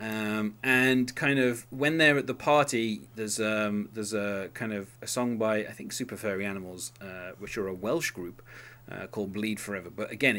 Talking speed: 200 wpm